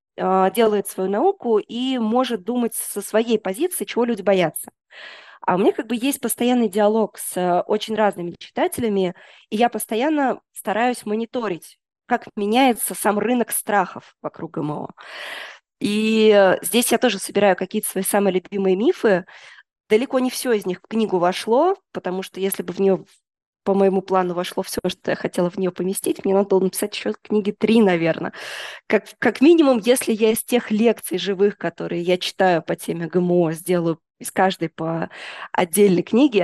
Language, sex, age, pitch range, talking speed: Russian, female, 20-39, 185-230 Hz, 165 wpm